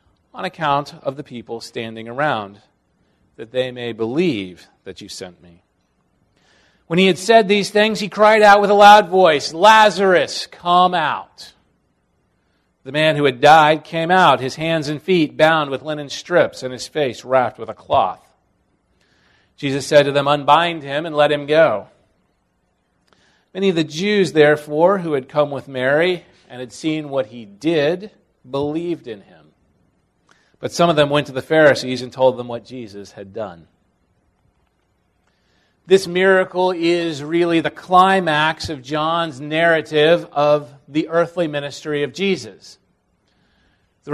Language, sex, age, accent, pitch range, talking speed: English, male, 40-59, American, 130-175 Hz, 155 wpm